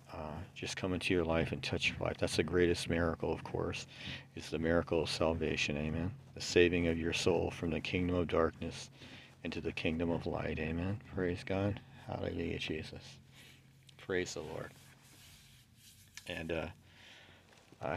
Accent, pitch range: American, 80-95 Hz